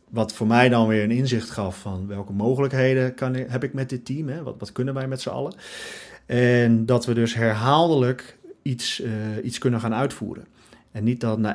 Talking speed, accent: 210 wpm, Dutch